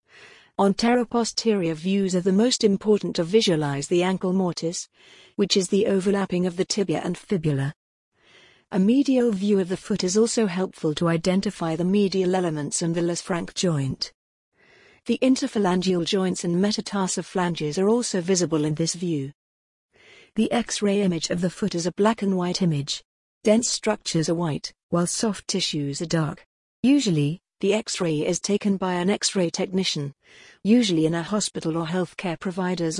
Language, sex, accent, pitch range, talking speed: English, female, British, 165-205 Hz, 160 wpm